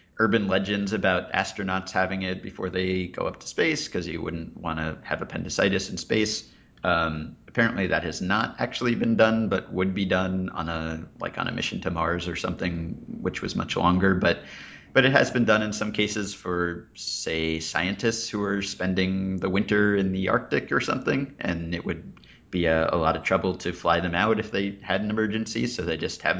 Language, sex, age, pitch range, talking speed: English, male, 30-49, 85-105 Hz, 205 wpm